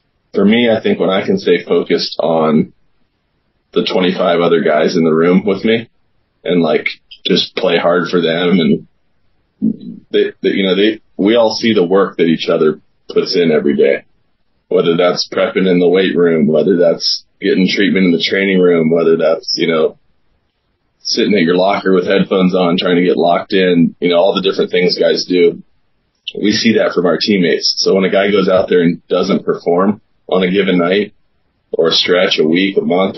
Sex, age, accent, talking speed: male, 20-39, American, 195 wpm